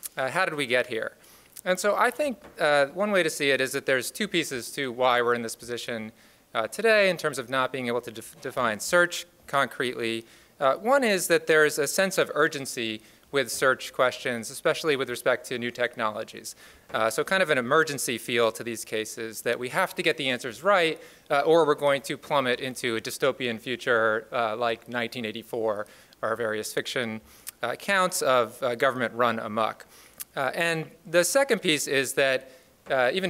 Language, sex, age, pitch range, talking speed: English, male, 30-49, 120-155 Hz, 195 wpm